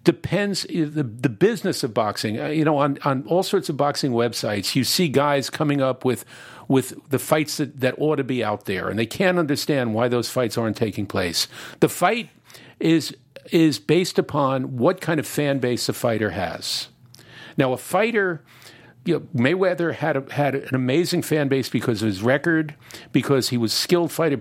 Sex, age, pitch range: male, 50-69, 120-155 Hz